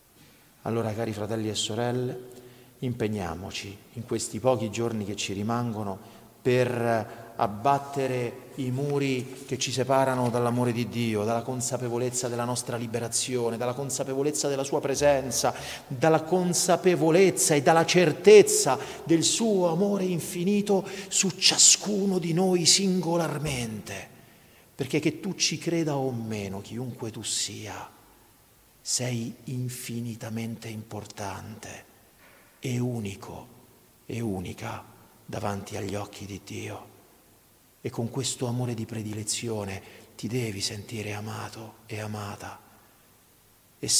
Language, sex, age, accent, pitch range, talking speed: Italian, male, 40-59, native, 105-135 Hz, 110 wpm